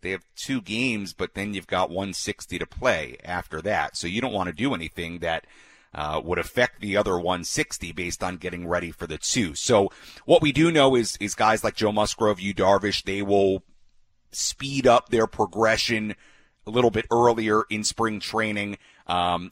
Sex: male